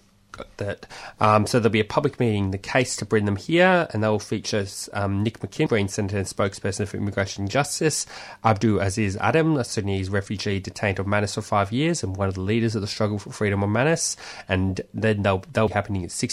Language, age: English, 20-39